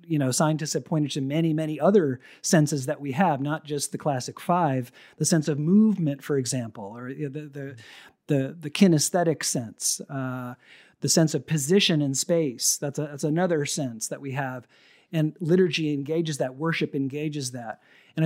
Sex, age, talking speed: male, 50-69, 180 wpm